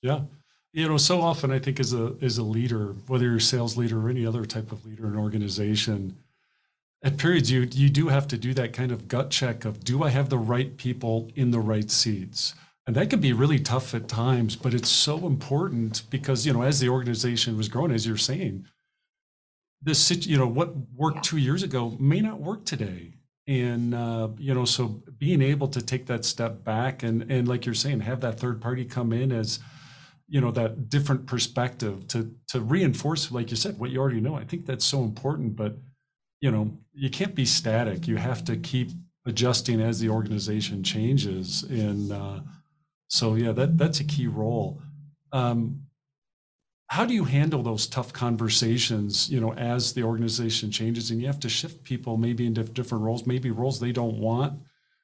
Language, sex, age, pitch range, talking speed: English, male, 40-59, 115-140 Hz, 200 wpm